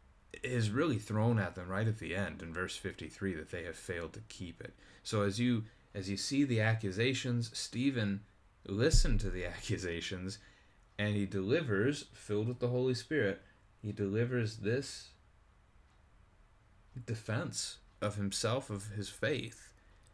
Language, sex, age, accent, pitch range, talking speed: English, male, 30-49, American, 95-115 Hz, 145 wpm